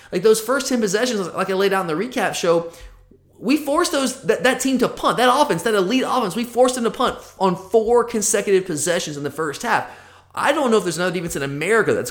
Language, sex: English, male